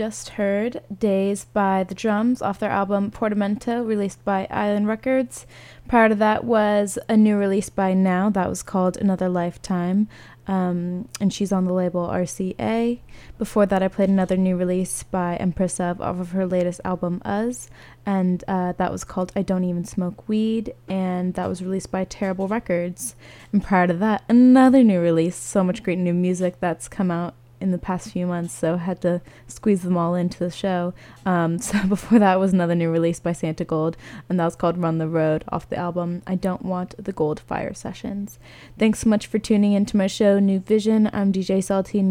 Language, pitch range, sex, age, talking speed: English, 175-205 Hz, female, 20-39, 200 wpm